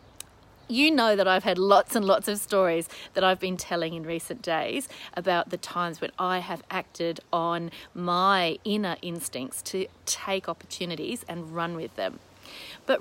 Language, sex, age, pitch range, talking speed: English, female, 40-59, 175-220 Hz, 165 wpm